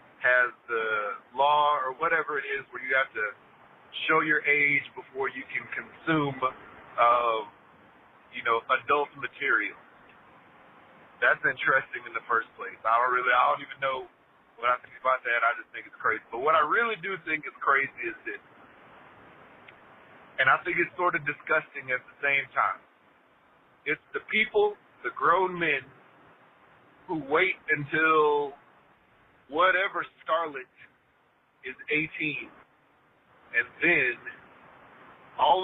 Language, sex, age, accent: English, male, 40-59, American